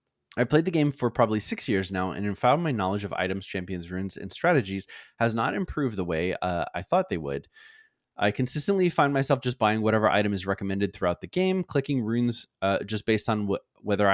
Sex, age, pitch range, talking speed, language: male, 20-39, 95-130 Hz, 210 wpm, English